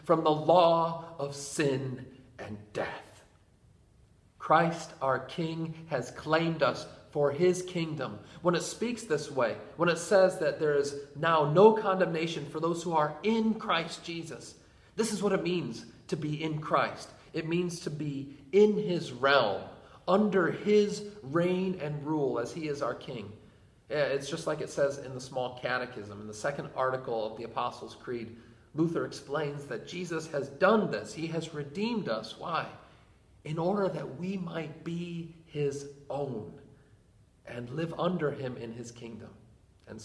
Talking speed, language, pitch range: 165 wpm, English, 130-170 Hz